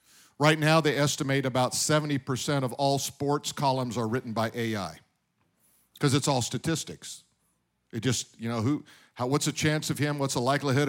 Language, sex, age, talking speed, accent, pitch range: English, male, 50-69, 175 wpm, American, 130-165 Hz